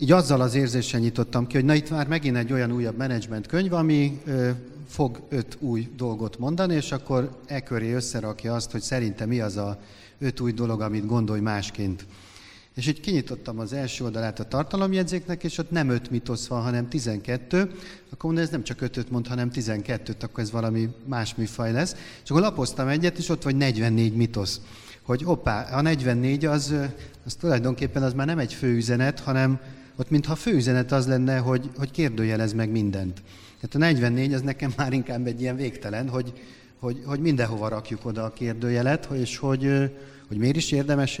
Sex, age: male, 40-59